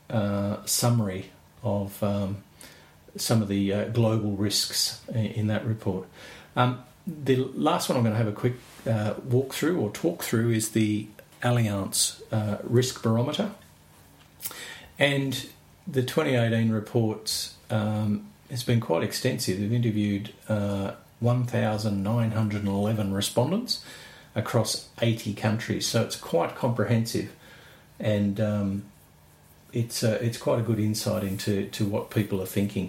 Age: 40-59